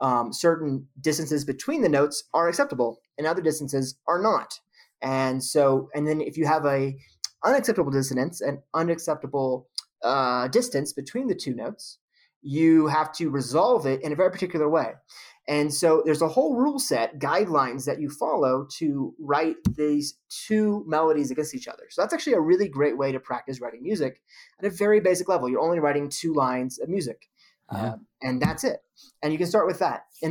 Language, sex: English, male